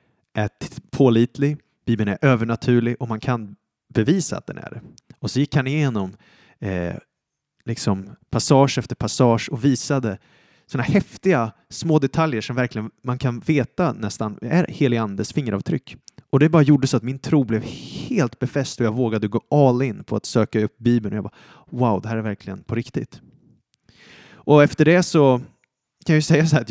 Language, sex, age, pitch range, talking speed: Swedish, male, 30-49, 115-150 Hz, 180 wpm